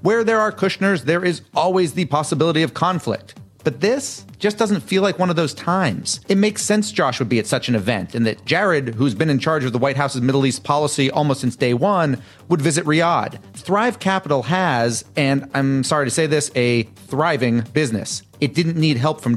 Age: 30-49